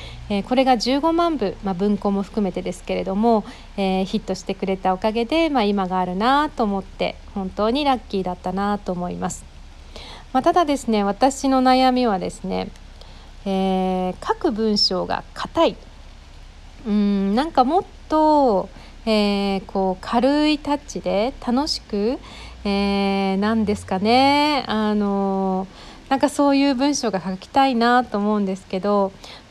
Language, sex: Japanese, female